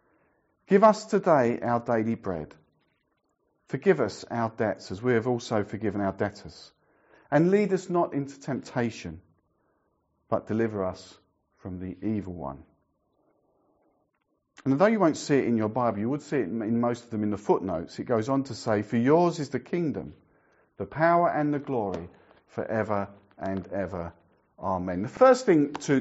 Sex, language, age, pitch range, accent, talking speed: male, English, 50-69, 105-155 Hz, British, 175 wpm